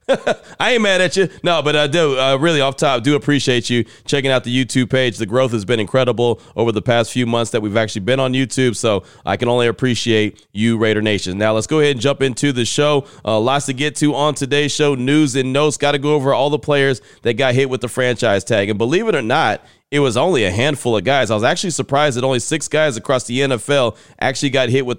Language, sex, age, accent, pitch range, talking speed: English, male, 30-49, American, 120-150 Hz, 255 wpm